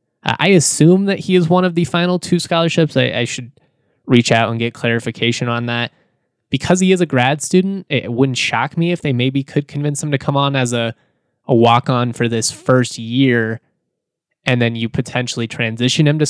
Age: 20-39